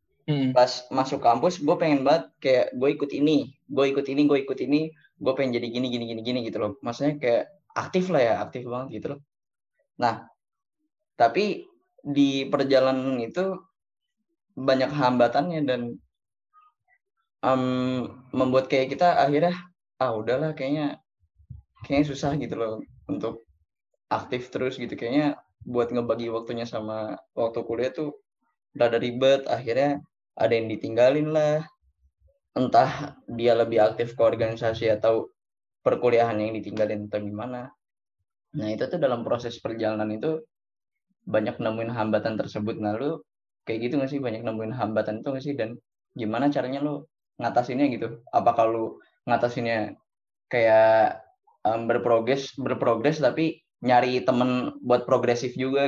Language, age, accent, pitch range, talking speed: Indonesian, 10-29, native, 115-145 Hz, 135 wpm